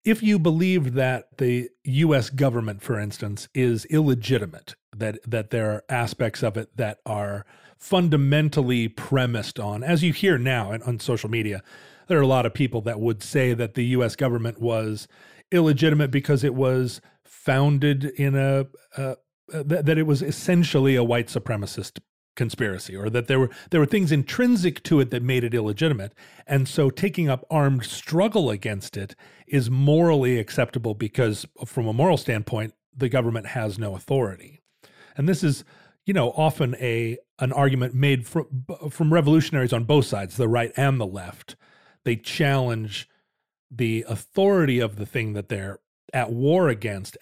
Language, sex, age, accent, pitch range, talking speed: English, male, 40-59, American, 115-145 Hz, 165 wpm